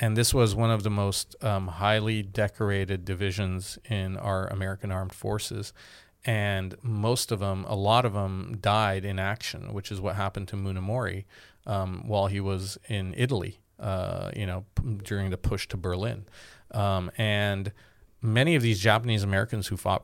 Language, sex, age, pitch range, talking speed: English, male, 40-59, 95-110 Hz, 165 wpm